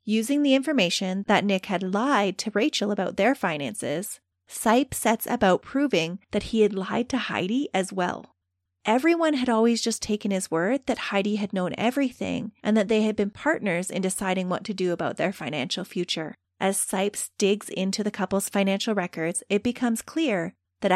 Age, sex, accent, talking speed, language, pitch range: 30-49, female, American, 180 wpm, English, 185-230 Hz